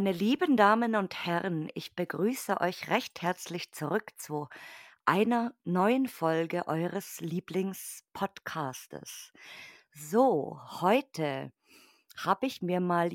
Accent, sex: German, female